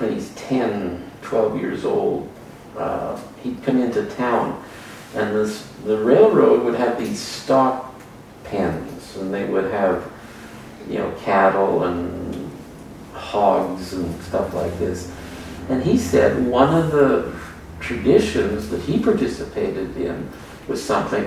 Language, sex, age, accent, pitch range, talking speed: English, male, 50-69, American, 105-140 Hz, 125 wpm